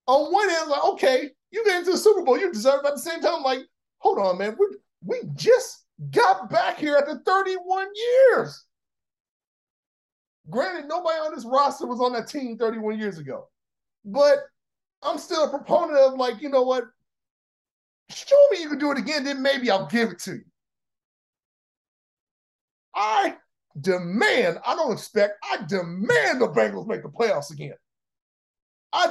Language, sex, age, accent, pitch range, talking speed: English, male, 30-49, American, 250-340 Hz, 170 wpm